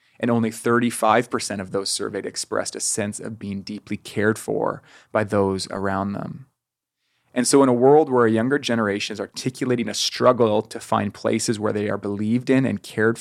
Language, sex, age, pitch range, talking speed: English, male, 30-49, 105-120 Hz, 185 wpm